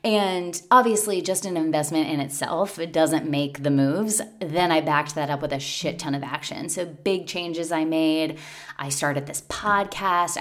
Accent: American